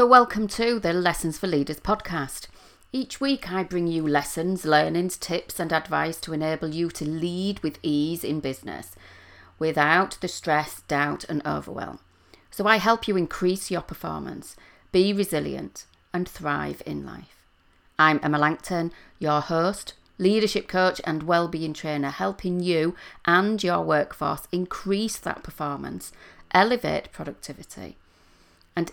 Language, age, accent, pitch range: English, 40-59, British, 150-185 Hz